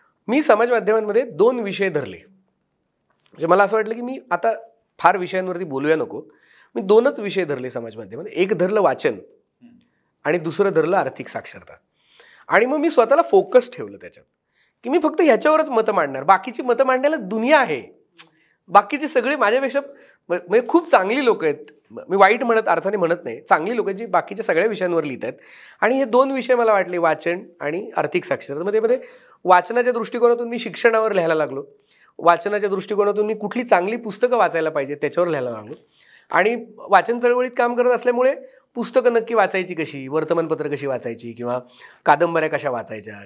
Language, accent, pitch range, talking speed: Marathi, native, 170-250 Hz, 160 wpm